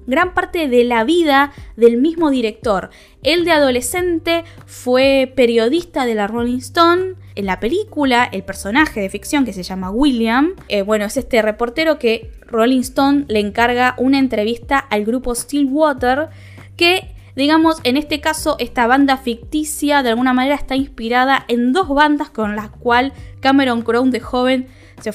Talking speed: 160 wpm